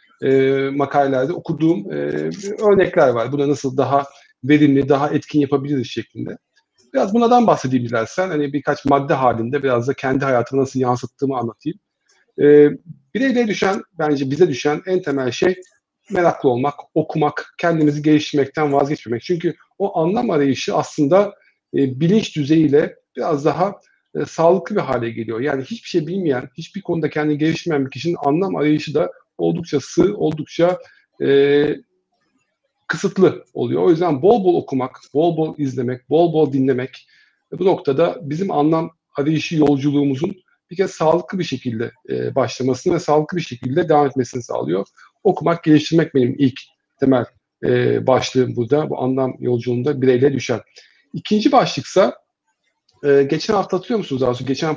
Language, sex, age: Turkish, male, 50-69